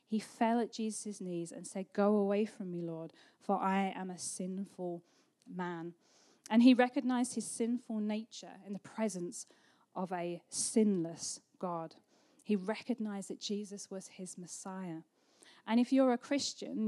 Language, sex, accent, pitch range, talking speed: English, female, British, 185-220 Hz, 155 wpm